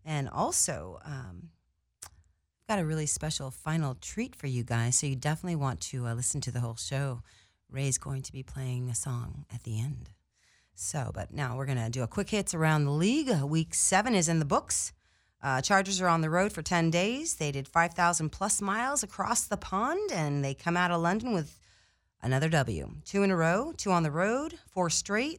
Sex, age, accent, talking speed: female, 30-49, American, 210 wpm